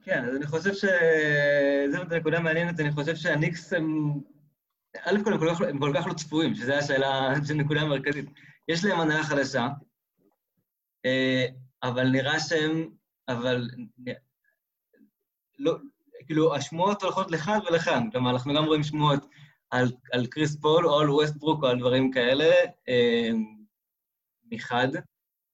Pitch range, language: 130-155 Hz, Hebrew